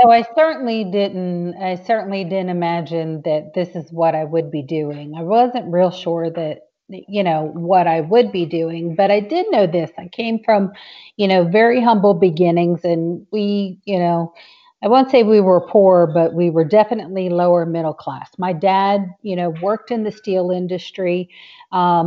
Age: 40-59